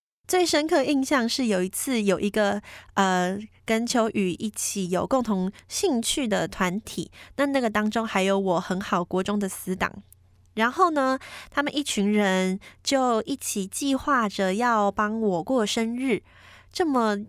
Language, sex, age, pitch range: Chinese, female, 20-39, 200-275 Hz